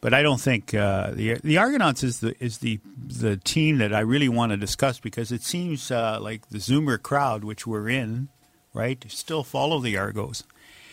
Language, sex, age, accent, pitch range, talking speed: English, male, 50-69, American, 110-135 Hz, 200 wpm